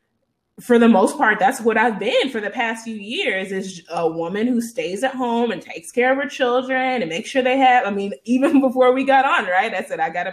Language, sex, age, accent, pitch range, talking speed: English, female, 20-39, American, 175-225 Hz, 250 wpm